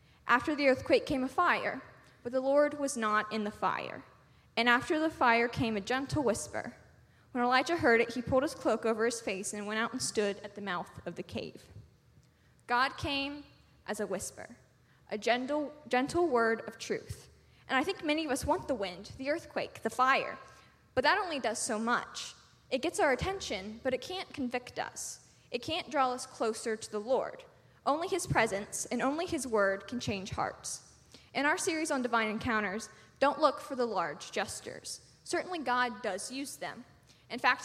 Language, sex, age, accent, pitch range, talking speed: English, female, 20-39, American, 225-290 Hz, 190 wpm